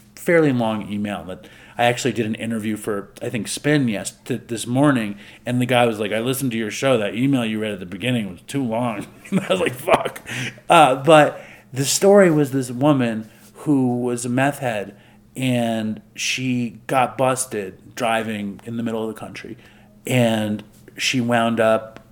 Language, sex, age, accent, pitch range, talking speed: English, male, 40-59, American, 105-125 Hz, 180 wpm